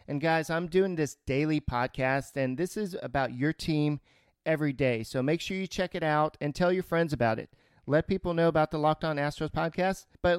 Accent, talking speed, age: American, 220 wpm, 40-59